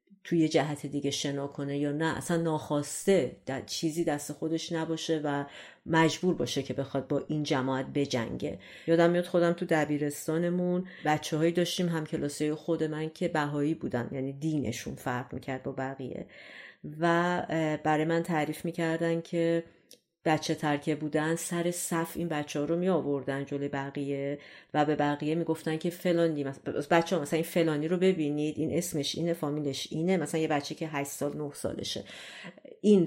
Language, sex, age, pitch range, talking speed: Persian, female, 40-59, 145-170 Hz, 165 wpm